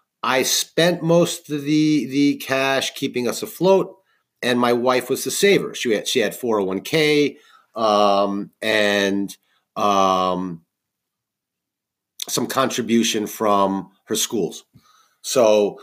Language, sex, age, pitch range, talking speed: English, male, 40-59, 100-135 Hz, 115 wpm